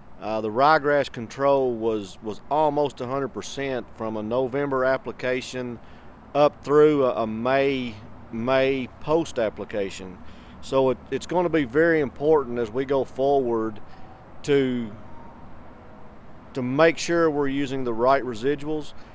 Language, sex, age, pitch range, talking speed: English, male, 40-59, 120-150 Hz, 125 wpm